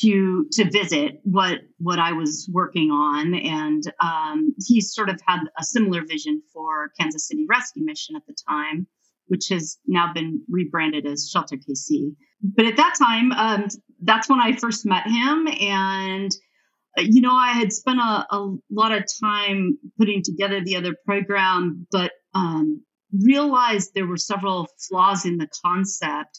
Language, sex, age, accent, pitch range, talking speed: English, female, 40-59, American, 160-215 Hz, 160 wpm